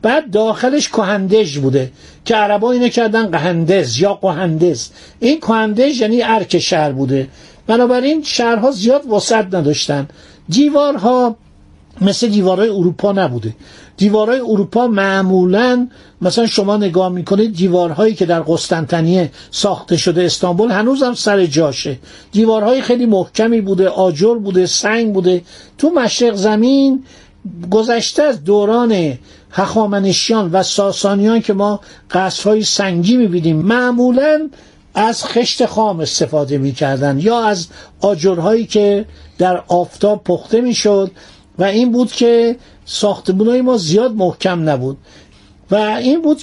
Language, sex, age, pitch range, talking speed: Persian, male, 50-69, 180-235 Hz, 125 wpm